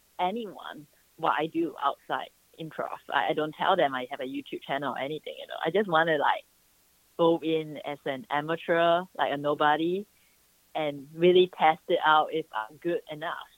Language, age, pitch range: English, 20-39, 155-235 Hz